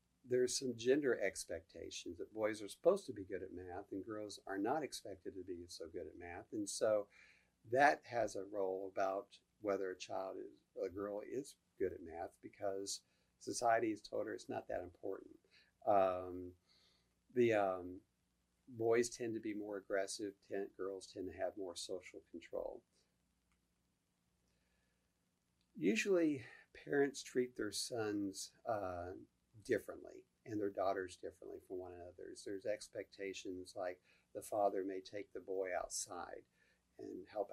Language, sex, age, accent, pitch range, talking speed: English, male, 50-69, American, 95-135 Hz, 150 wpm